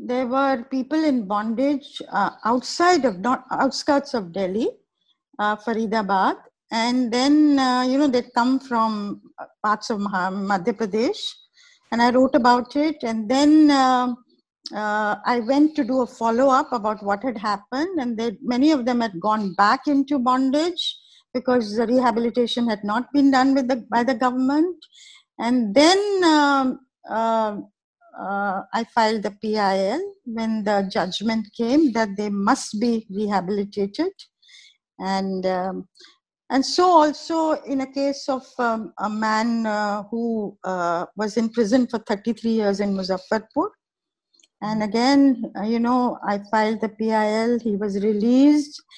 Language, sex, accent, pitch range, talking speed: English, female, Indian, 215-280 Hz, 145 wpm